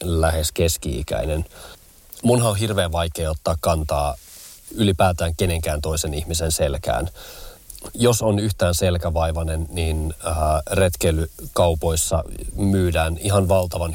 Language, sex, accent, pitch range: Finnish, male, native, 80-95 Hz